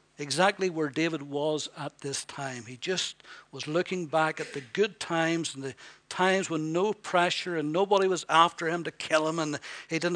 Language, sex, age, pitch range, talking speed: English, male, 60-79, 150-180 Hz, 195 wpm